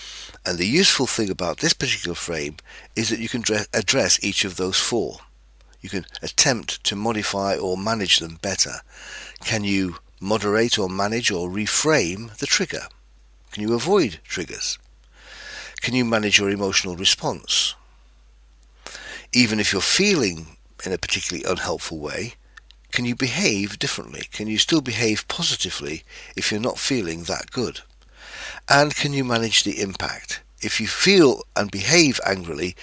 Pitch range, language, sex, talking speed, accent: 85-120 Hz, English, male, 150 wpm, British